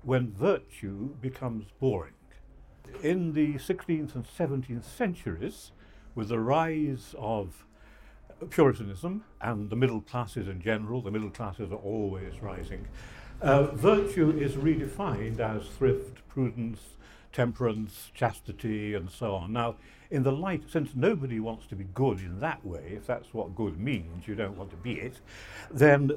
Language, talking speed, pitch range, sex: English, 145 wpm, 105-145 Hz, male